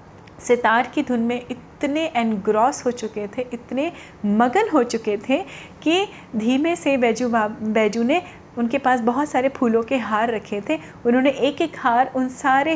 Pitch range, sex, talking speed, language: 220-285 Hz, female, 165 wpm, Hindi